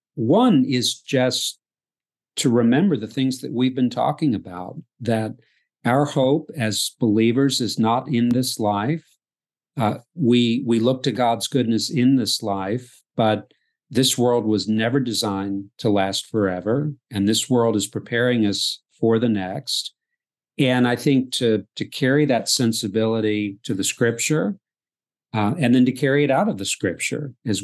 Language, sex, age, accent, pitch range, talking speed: English, male, 50-69, American, 110-135 Hz, 155 wpm